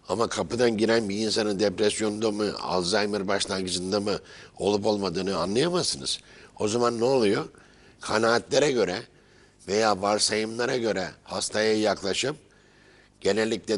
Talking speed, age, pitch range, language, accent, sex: 110 wpm, 60-79, 100-125 Hz, Turkish, native, male